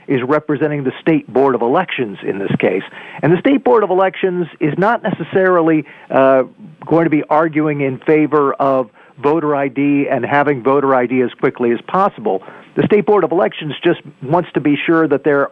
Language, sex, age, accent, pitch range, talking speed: English, male, 50-69, American, 130-155 Hz, 190 wpm